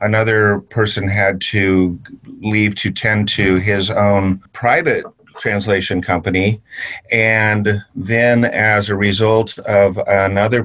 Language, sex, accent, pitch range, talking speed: English, male, American, 95-115 Hz, 115 wpm